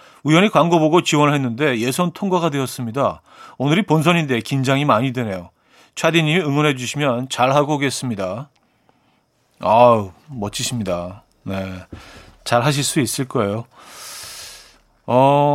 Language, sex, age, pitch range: Korean, male, 40-59, 120-165 Hz